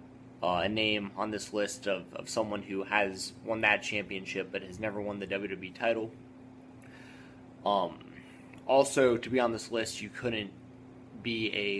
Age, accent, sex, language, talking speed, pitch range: 20-39, American, male, English, 165 wpm, 105-130 Hz